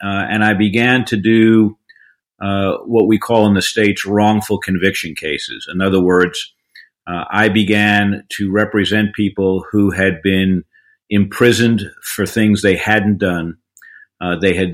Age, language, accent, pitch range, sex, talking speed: 50-69, English, American, 95-110 Hz, male, 150 wpm